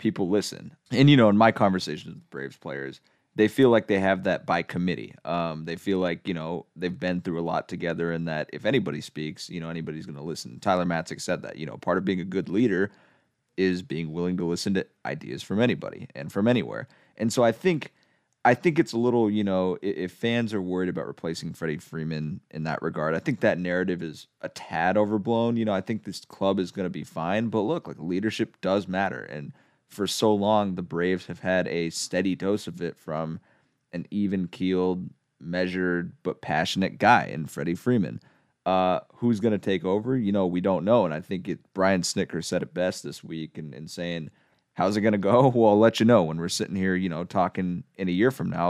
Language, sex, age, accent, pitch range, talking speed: English, male, 30-49, American, 85-105 Hz, 225 wpm